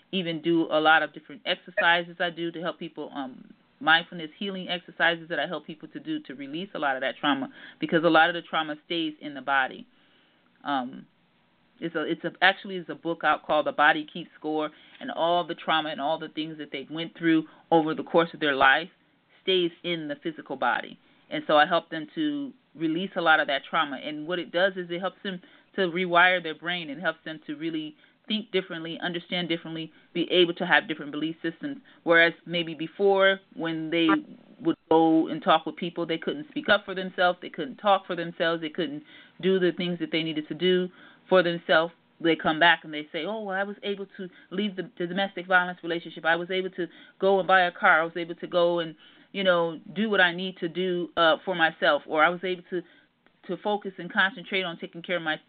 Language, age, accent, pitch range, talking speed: English, 30-49, American, 160-190 Hz, 225 wpm